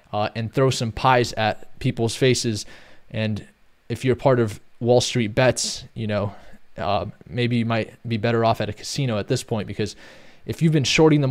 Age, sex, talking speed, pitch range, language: 20-39, male, 195 wpm, 115-135 Hz, English